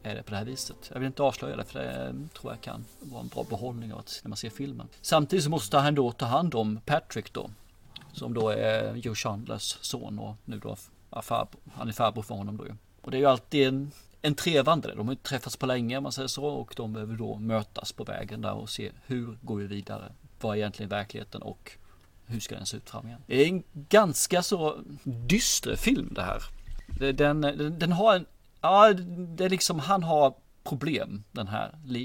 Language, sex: Swedish, male